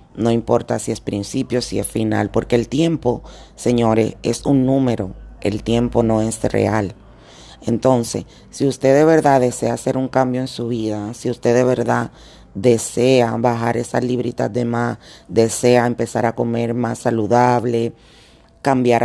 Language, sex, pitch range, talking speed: Spanish, female, 115-125 Hz, 155 wpm